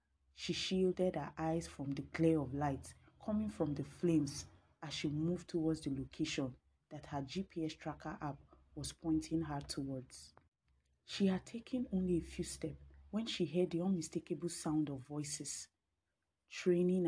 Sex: female